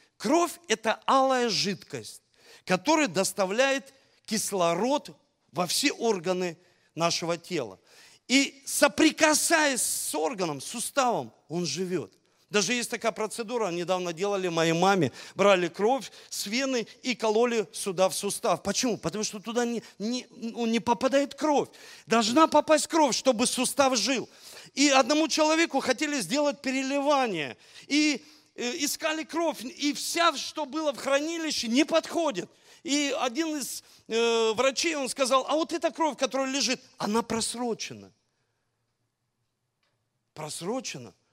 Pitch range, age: 185-275 Hz, 40-59